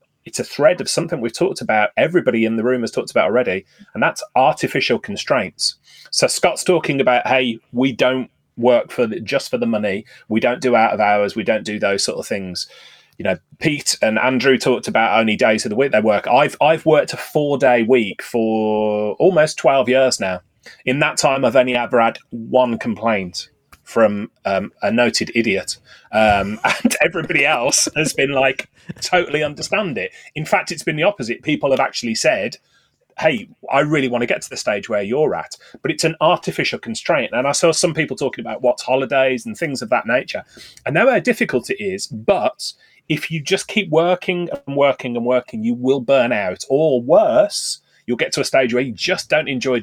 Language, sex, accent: English, male, British